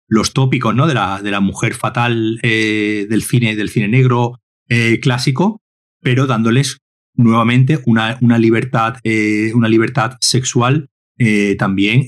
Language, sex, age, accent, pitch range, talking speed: Spanish, male, 30-49, Spanish, 110-130 Hz, 145 wpm